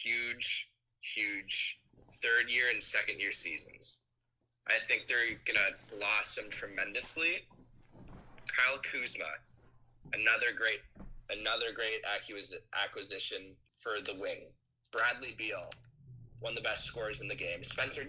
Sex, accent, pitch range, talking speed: male, American, 120-150 Hz, 115 wpm